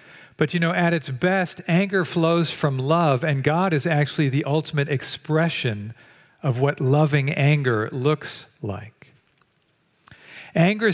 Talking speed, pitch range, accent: 130 wpm, 140-175 Hz, American